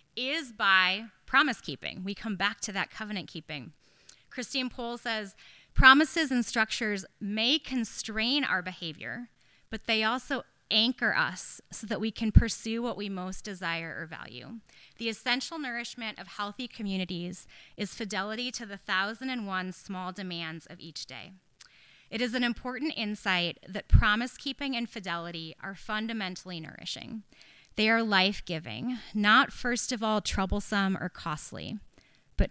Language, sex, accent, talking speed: English, female, American, 140 wpm